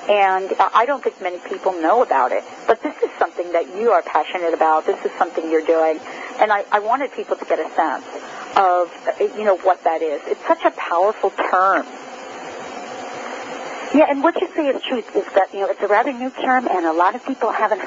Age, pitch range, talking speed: 40-59, 190-260 Hz, 220 wpm